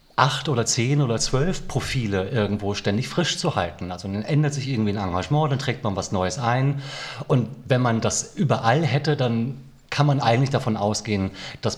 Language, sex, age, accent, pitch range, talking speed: German, male, 40-59, German, 105-135 Hz, 190 wpm